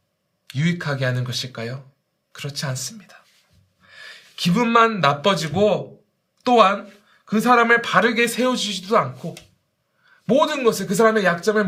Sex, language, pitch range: male, Korean, 135-200 Hz